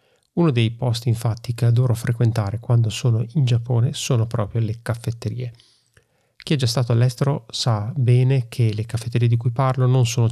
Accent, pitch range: native, 110-125 Hz